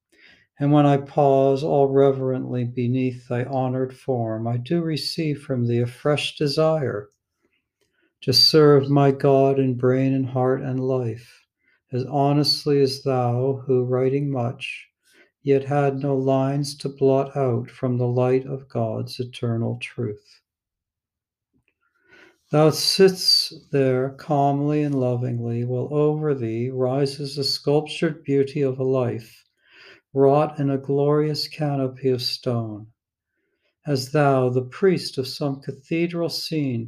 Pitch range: 125-150 Hz